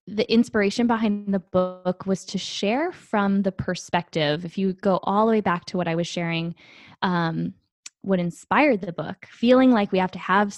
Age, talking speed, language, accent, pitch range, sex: 10-29, 195 wpm, English, American, 180-220 Hz, female